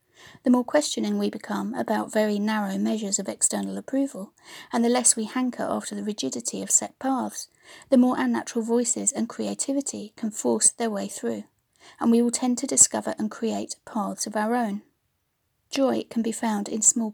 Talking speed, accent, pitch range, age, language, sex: 180 wpm, British, 205-245 Hz, 40-59, English, female